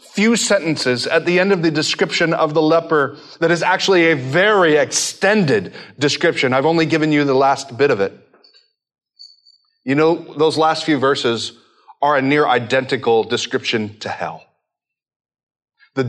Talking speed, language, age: 155 wpm, English, 30-49